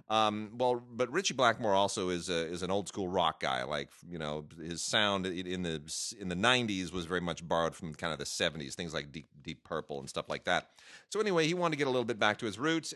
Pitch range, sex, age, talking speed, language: 90-115 Hz, male, 30-49, 250 wpm, English